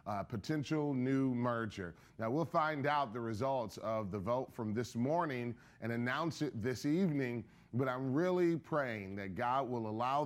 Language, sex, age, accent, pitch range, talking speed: English, male, 30-49, American, 110-140 Hz, 170 wpm